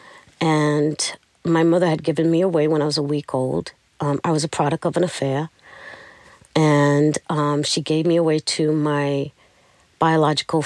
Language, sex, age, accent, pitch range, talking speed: English, female, 40-59, American, 145-165 Hz, 170 wpm